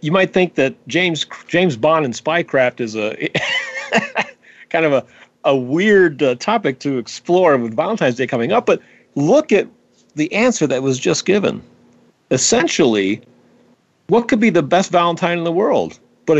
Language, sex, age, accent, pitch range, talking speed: English, male, 40-59, American, 145-195 Hz, 165 wpm